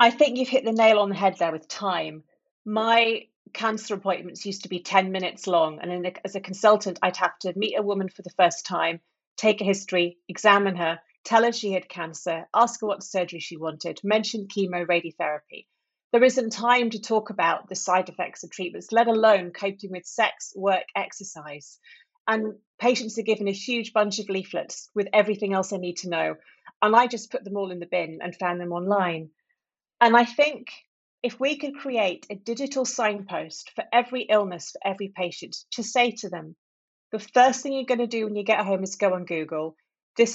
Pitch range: 180-225 Hz